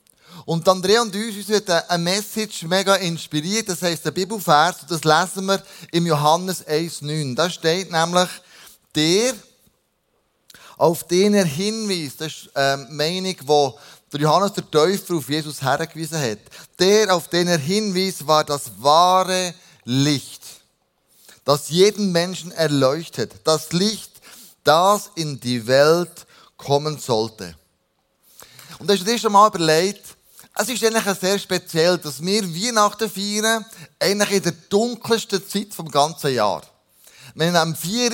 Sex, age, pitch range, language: male, 20-39, 155-195 Hz, German